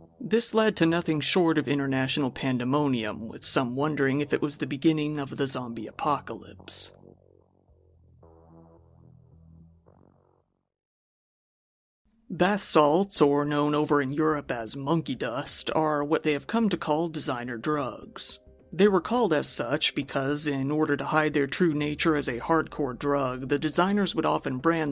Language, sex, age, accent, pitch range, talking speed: English, male, 40-59, American, 130-165 Hz, 145 wpm